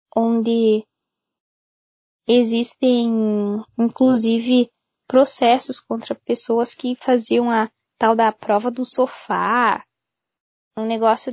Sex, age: female, 10-29